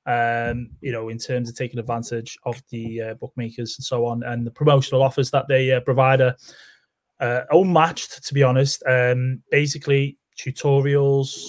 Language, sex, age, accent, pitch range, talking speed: English, male, 20-39, British, 120-145 Hz, 170 wpm